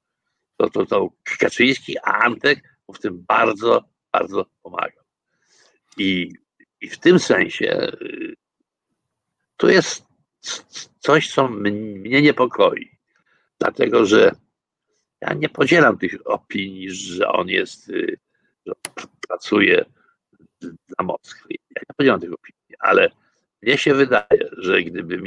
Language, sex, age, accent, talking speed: Polish, male, 60-79, native, 110 wpm